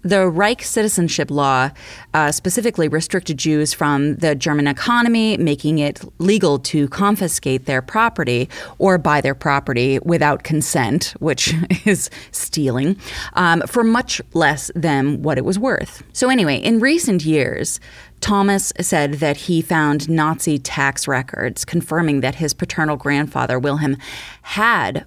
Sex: female